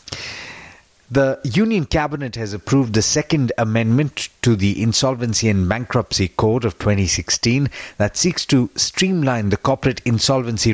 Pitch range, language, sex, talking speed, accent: 100-135 Hz, English, male, 130 wpm, Indian